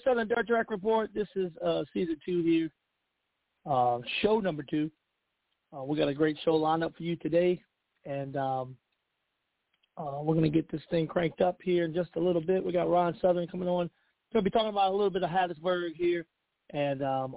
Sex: male